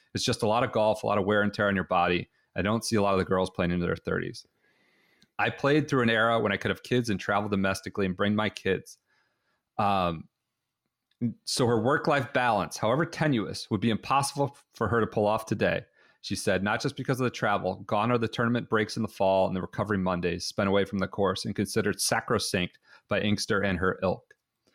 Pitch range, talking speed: 100-125 Hz, 225 wpm